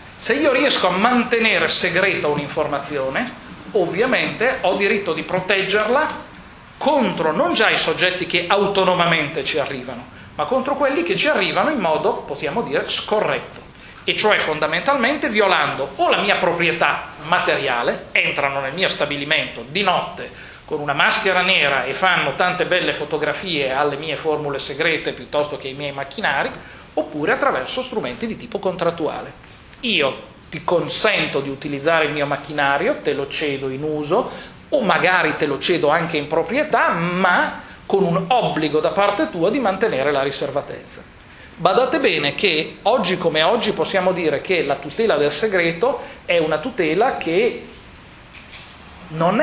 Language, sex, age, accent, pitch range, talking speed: Italian, male, 40-59, native, 145-200 Hz, 145 wpm